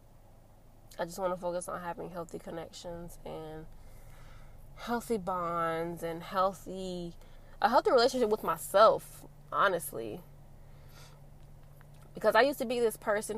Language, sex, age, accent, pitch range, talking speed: English, female, 20-39, American, 145-215 Hz, 120 wpm